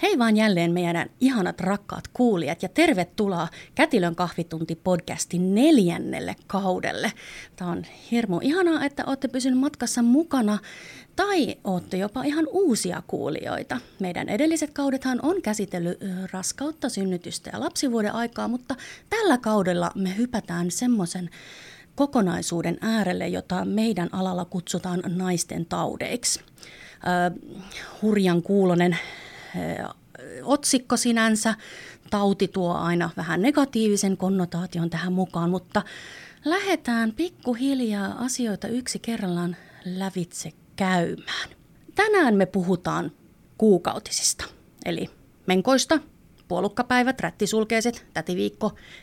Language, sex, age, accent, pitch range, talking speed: Finnish, female, 30-49, native, 180-250 Hz, 100 wpm